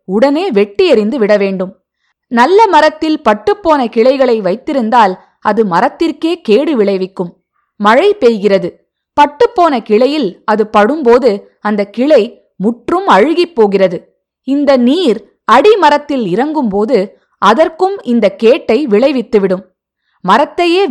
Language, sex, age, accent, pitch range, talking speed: Tamil, female, 20-39, native, 205-305 Hz, 100 wpm